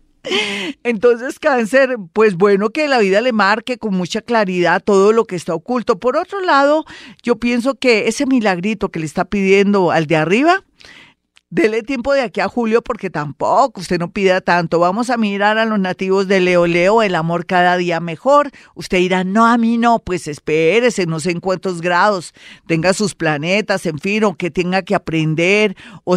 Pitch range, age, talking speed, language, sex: 175-230 Hz, 40-59, 190 wpm, Spanish, female